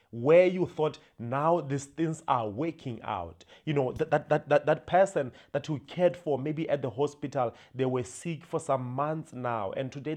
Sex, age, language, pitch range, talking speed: male, 30-49, English, 125-155 Hz, 195 wpm